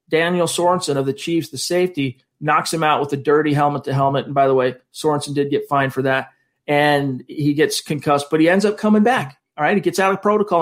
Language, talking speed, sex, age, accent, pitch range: English, 245 wpm, male, 40-59, American, 140-175 Hz